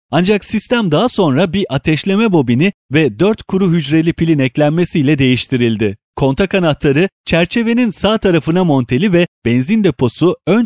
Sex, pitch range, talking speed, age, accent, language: male, 140-195 Hz, 135 wpm, 30-49, native, Turkish